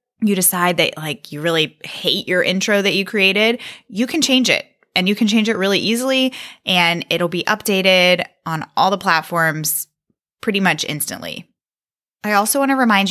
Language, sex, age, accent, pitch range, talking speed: English, female, 20-39, American, 170-220 Hz, 180 wpm